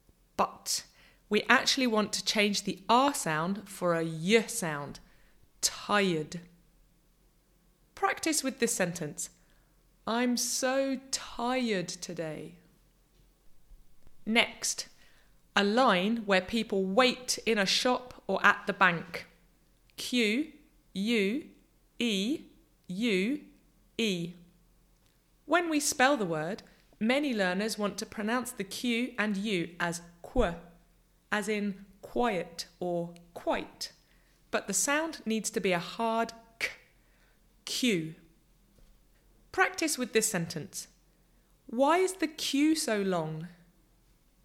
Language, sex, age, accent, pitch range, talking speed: English, female, 20-39, British, 175-240 Hz, 110 wpm